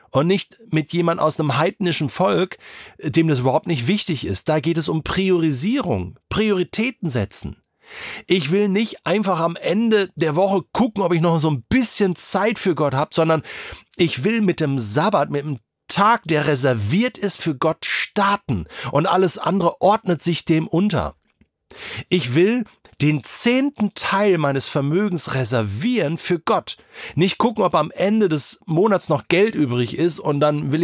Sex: male